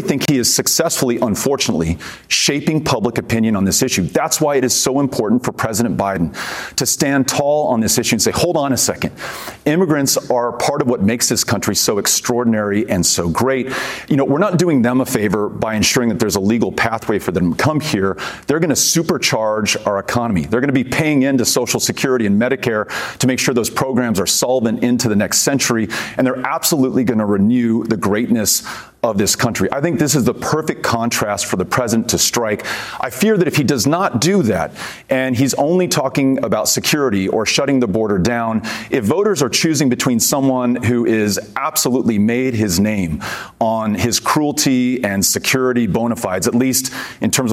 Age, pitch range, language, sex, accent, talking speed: 40-59, 110-135 Hz, English, male, American, 195 wpm